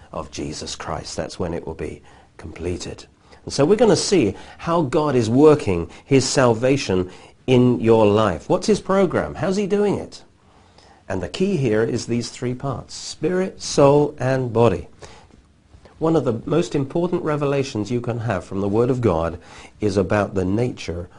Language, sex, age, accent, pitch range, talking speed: English, male, 40-59, British, 100-145 Hz, 170 wpm